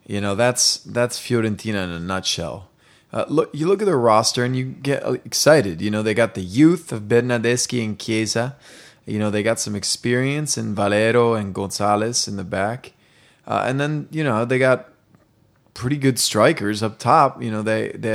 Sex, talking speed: male, 190 wpm